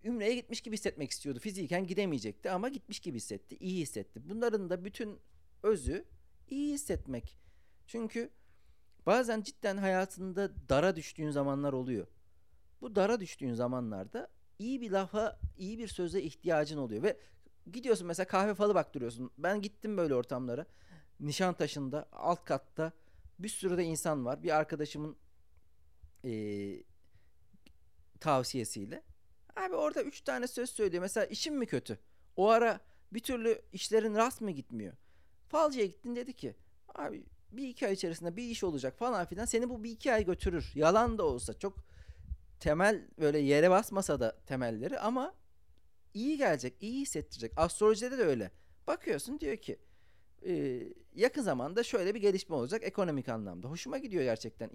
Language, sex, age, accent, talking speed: Turkish, male, 40-59, native, 145 wpm